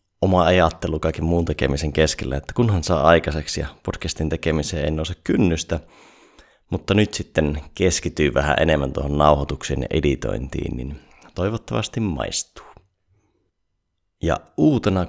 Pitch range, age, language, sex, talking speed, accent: 75-90 Hz, 30-49, Finnish, male, 125 wpm, native